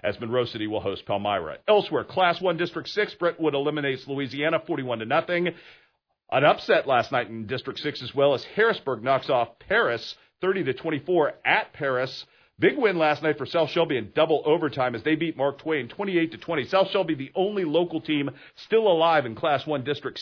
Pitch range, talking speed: 135-175 Hz, 200 wpm